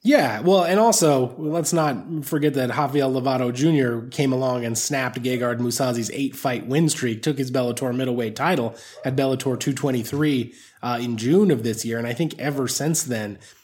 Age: 20-39